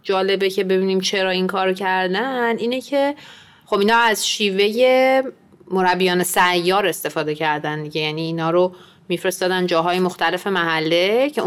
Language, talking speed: Persian, 135 wpm